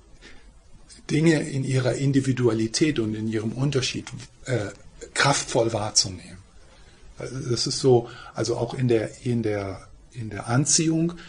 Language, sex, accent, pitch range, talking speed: German, male, German, 115-145 Hz, 130 wpm